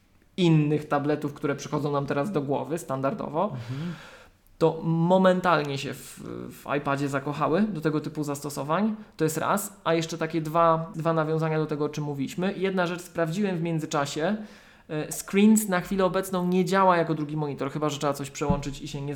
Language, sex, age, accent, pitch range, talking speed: Polish, male, 20-39, native, 150-180 Hz, 175 wpm